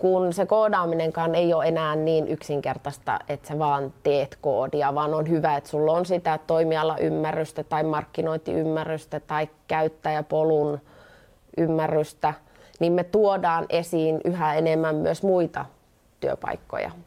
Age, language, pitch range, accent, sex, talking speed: 30-49, Finnish, 160-195 Hz, native, female, 125 wpm